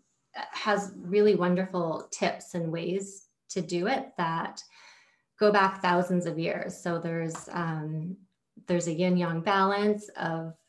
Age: 30-49